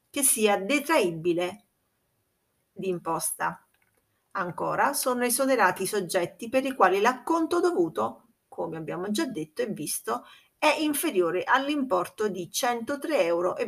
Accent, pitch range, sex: native, 185-270 Hz, female